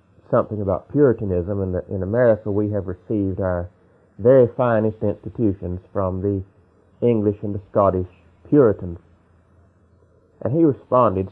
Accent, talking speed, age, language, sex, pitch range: American, 125 wpm, 40-59, English, male, 95-115 Hz